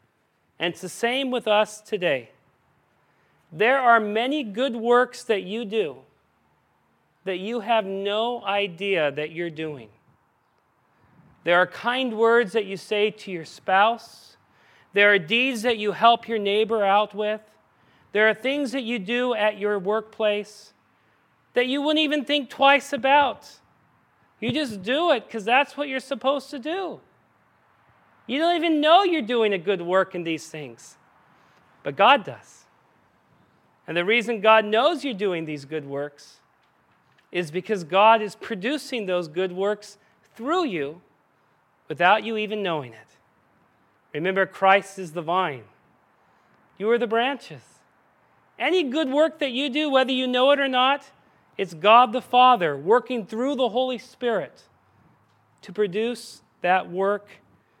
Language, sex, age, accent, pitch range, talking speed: English, male, 40-59, American, 190-255 Hz, 150 wpm